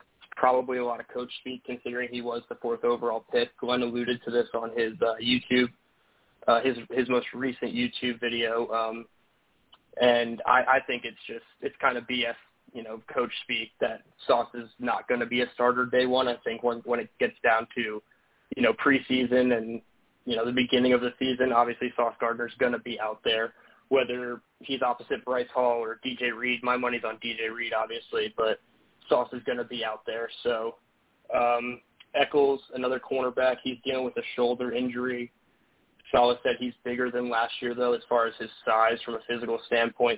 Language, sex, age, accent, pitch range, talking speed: English, male, 20-39, American, 115-125 Hz, 195 wpm